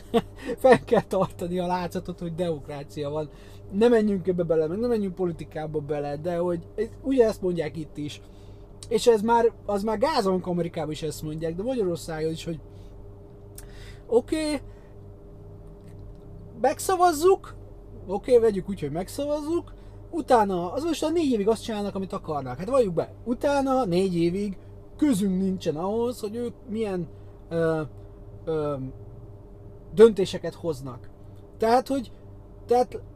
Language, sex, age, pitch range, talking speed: Hungarian, male, 30-49, 145-215 Hz, 140 wpm